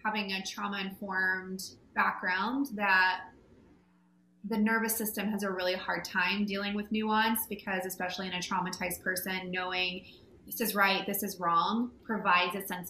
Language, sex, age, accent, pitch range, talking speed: English, female, 20-39, American, 185-225 Hz, 150 wpm